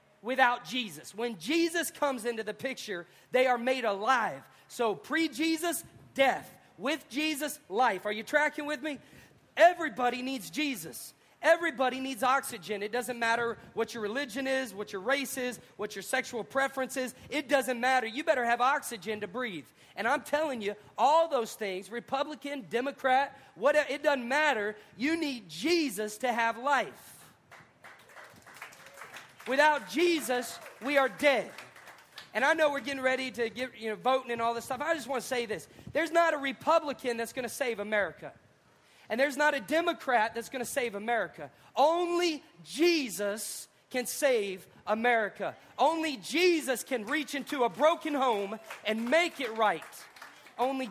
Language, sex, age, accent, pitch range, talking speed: English, male, 40-59, American, 230-290 Hz, 160 wpm